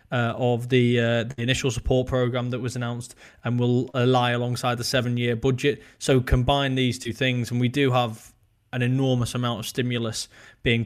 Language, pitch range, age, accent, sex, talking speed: English, 120-135 Hz, 10-29, British, male, 190 wpm